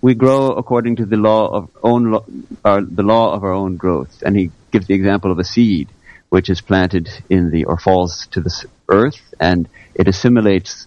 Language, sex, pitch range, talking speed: English, male, 90-110 Hz, 205 wpm